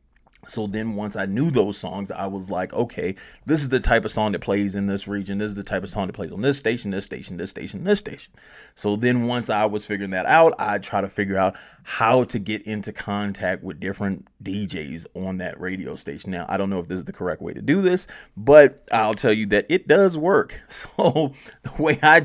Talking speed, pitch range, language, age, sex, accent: 240 wpm, 100-110 Hz, English, 20-39, male, American